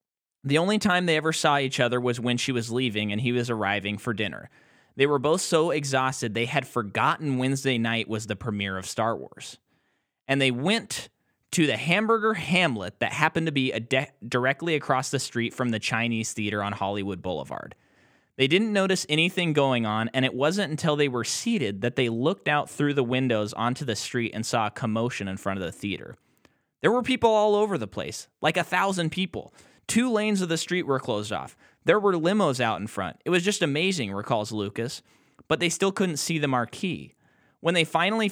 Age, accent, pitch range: 20-39, American, 115-160 Hz